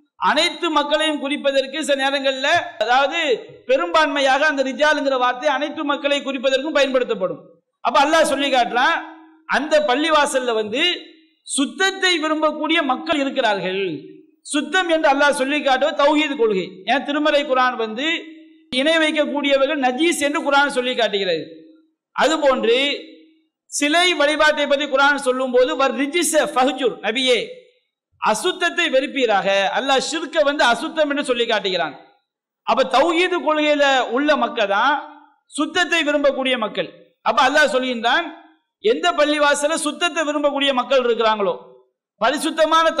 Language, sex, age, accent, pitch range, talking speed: English, male, 50-69, Indian, 260-320 Hz, 115 wpm